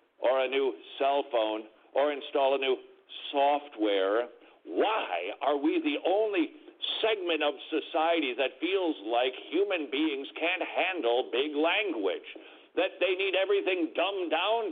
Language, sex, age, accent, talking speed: English, male, 60-79, American, 135 wpm